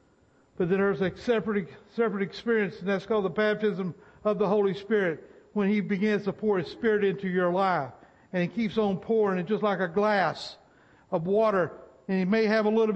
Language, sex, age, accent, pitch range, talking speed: English, male, 60-79, American, 180-215 Hz, 205 wpm